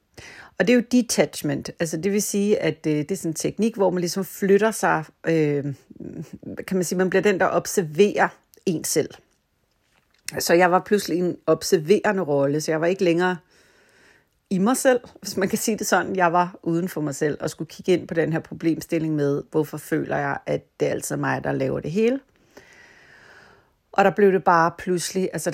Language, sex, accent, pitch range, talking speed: Danish, female, native, 155-195 Hz, 200 wpm